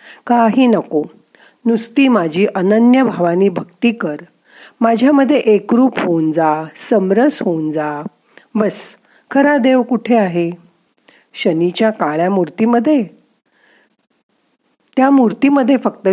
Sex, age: female, 40-59